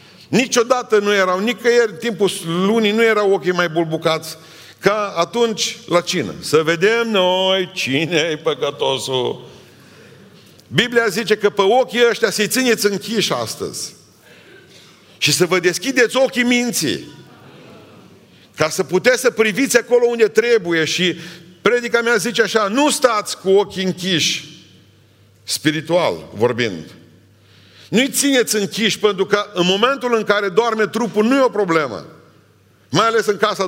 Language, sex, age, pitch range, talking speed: Romanian, male, 50-69, 175-235 Hz, 135 wpm